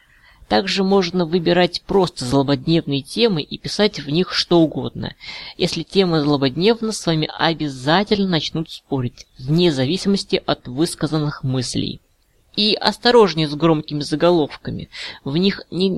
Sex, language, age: female, Russian, 20-39